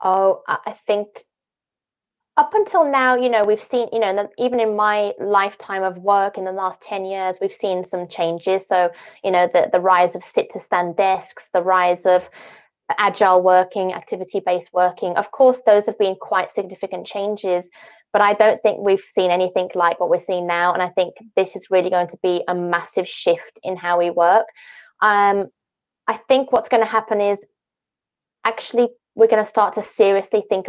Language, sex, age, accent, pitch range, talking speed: English, female, 20-39, British, 190-235 Hz, 190 wpm